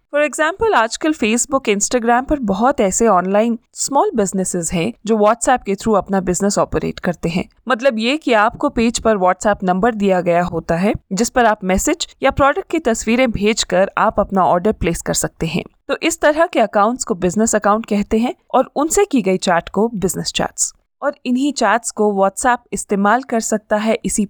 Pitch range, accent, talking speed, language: 195-255 Hz, native, 195 wpm, Hindi